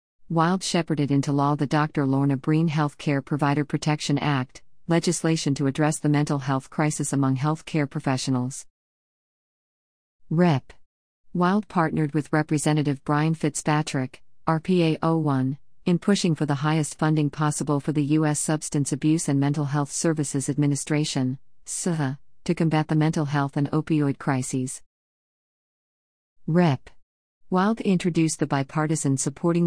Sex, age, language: female, 40-59, English